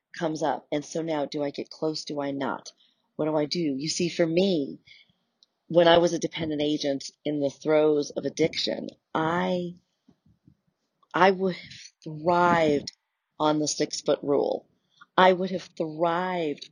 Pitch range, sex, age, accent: 155-190 Hz, female, 40-59, American